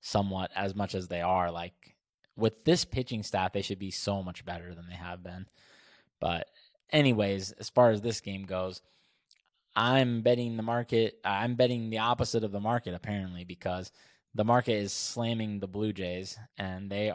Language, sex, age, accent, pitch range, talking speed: English, male, 20-39, American, 95-130 Hz, 180 wpm